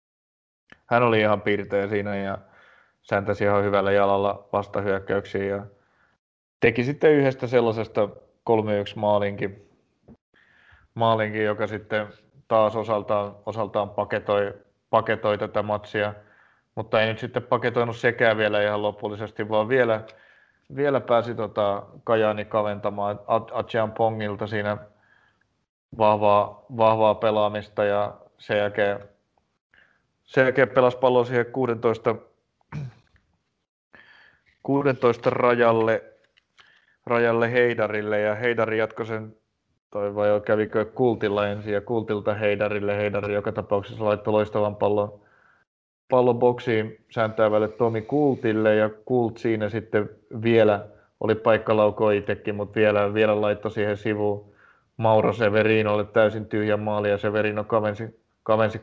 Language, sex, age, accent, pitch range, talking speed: Finnish, male, 20-39, native, 105-115 Hz, 115 wpm